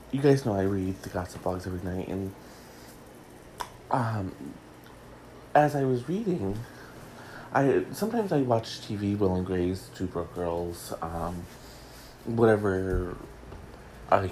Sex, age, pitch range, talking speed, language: male, 30-49, 95-135 Hz, 125 wpm, English